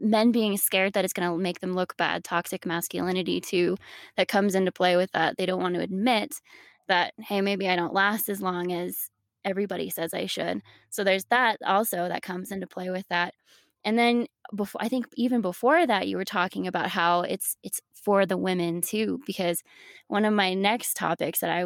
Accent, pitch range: American, 175-210 Hz